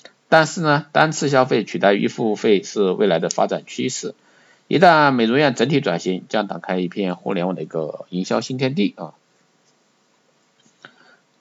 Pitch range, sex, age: 95-150 Hz, male, 50-69